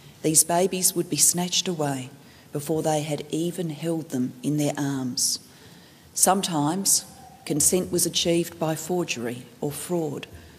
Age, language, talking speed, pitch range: 40-59, English, 130 wpm, 150-180 Hz